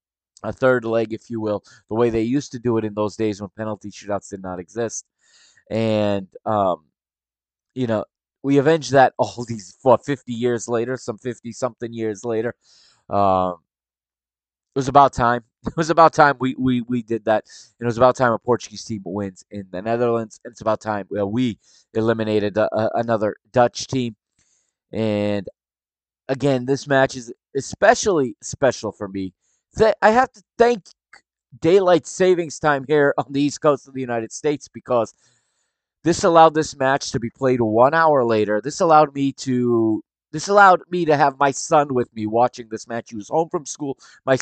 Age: 20-39